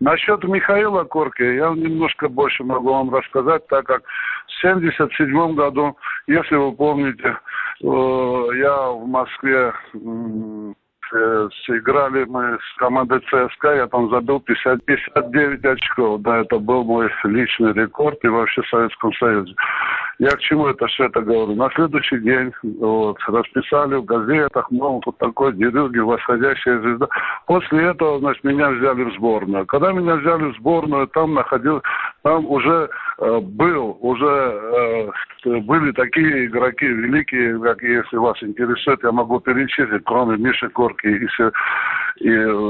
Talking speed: 135 wpm